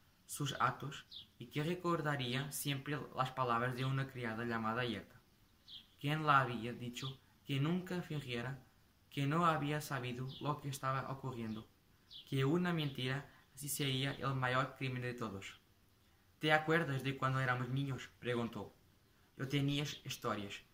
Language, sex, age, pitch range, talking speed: English, male, 20-39, 115-145 Hz, 140 wpm